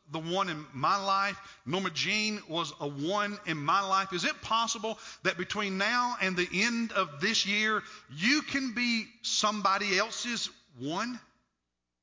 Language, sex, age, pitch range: English, male, 50-69, 170-230 Hz